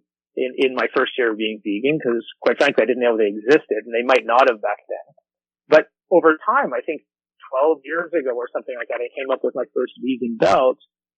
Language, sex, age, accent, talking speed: English, male, 30-49, American, 230 wpm